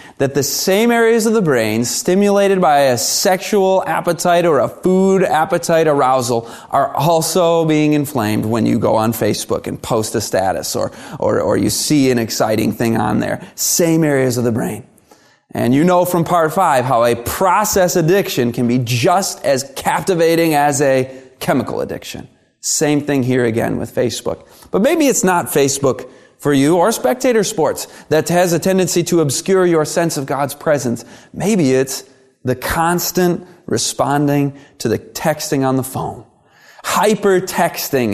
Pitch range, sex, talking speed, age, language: 130-180 Hz, male, 160 wpm, 30-49, English